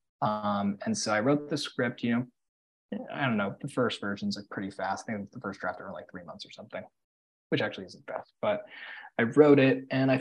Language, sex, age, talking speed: English, male, 20-39, 230 wpm